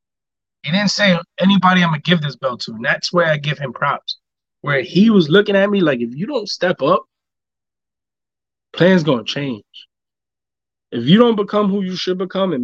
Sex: male